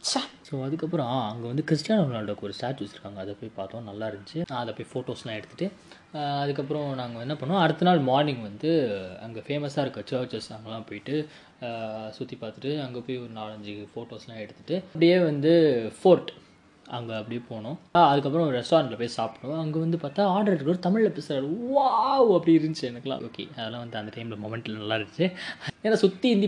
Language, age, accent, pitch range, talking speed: Tamil, 20-39, native, 120-160 Hz, 160 wpm